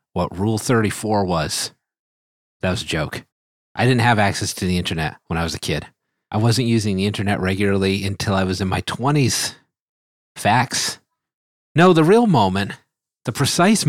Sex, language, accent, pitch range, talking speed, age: male, English, American, 90-120 Hz, 170 wpm, 40-59